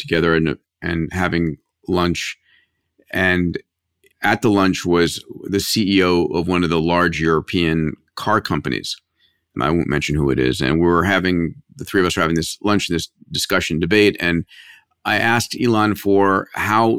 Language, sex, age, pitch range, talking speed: English, male, 40-59, 90-105 Hz, 170 wpm